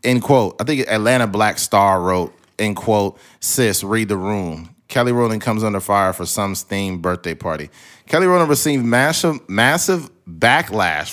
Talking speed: 160 wpm